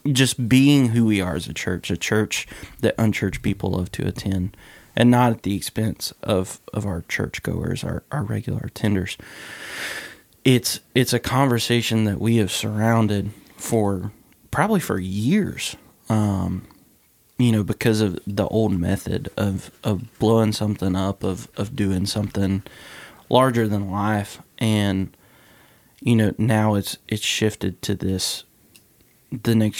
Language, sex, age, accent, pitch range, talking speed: English, male, 20-39, American, 100-115 Hz, 145 wpm